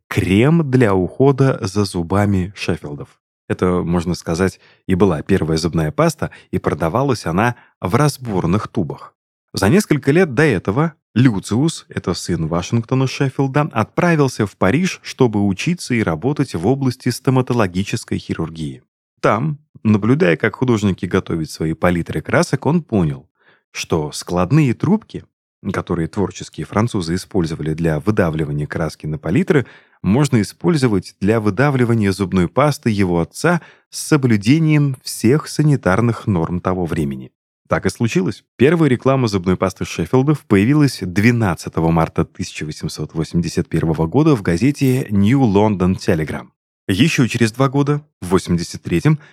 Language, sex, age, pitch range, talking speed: Russian, male, 30-49, 90-140 Hz, 125 wpm